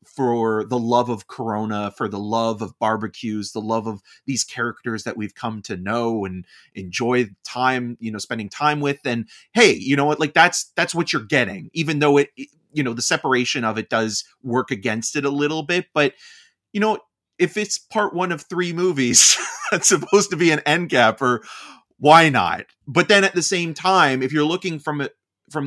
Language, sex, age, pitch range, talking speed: English, male, 30-49, 110-150 Hz, 200 wpm